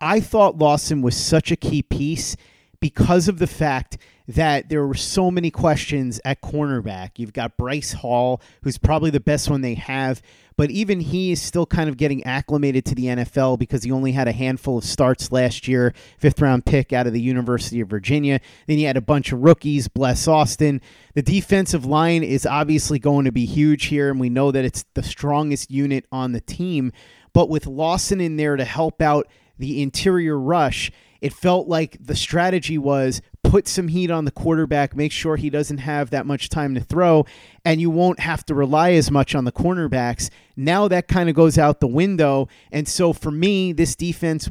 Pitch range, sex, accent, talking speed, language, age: 135-165 Hz, male, American, 200 wpm, English, 30-49